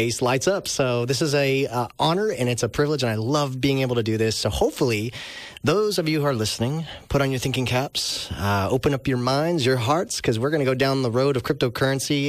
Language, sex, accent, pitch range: English, male, American, 110-145 Hz